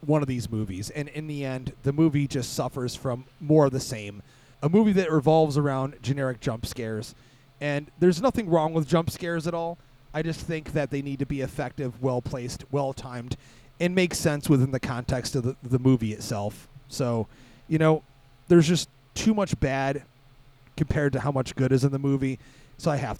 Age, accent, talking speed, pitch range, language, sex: 30-49, American, 200 wpm, 130-165 Hz, English, male